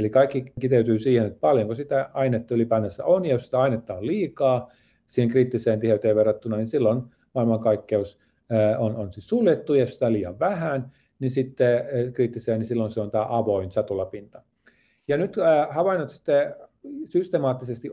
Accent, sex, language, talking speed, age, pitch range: native, male, Finnish, 150 wpm, 40-59, 110-130 Hz